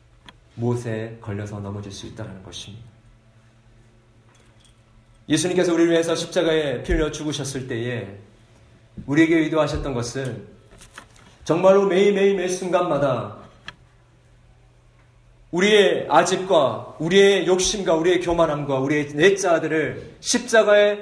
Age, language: 40-59, Korean